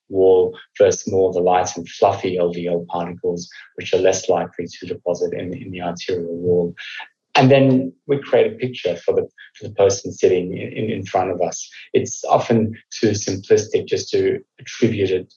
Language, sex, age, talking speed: English, male, 30-49, 175 wpm